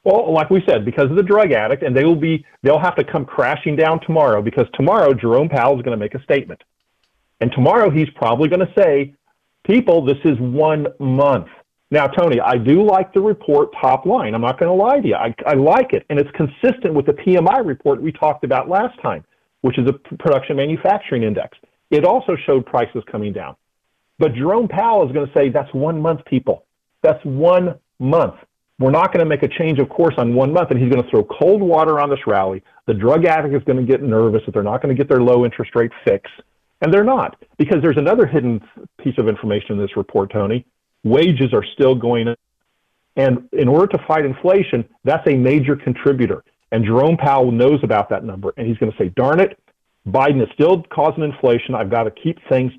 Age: 40-59